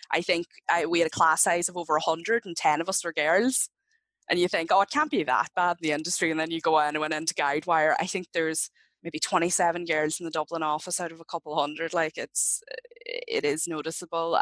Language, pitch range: English, 155-180 Hz